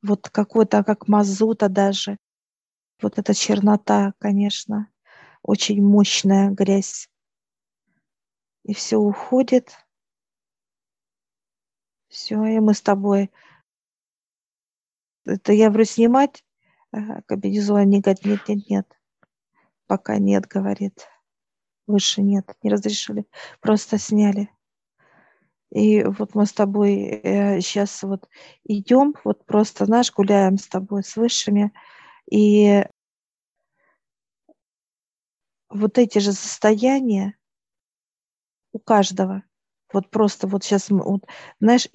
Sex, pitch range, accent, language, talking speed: female, 200-220 Hz, native, Russian, 100 wpm